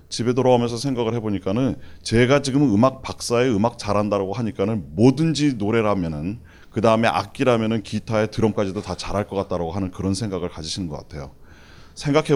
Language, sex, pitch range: Korean, male, 95-135 Hz